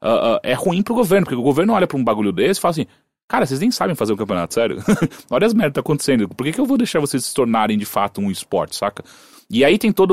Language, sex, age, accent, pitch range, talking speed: English, male, 30-49, Brazilian, 115-190 Hz, 295 wpm